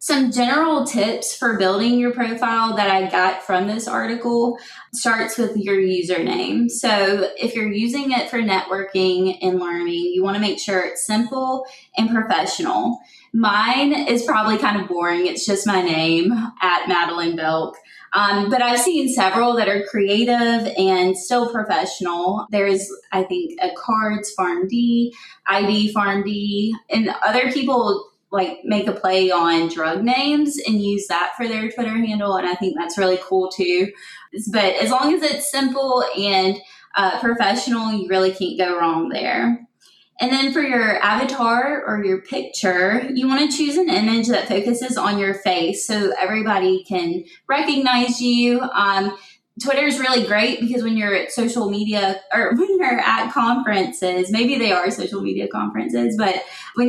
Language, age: English, 20-39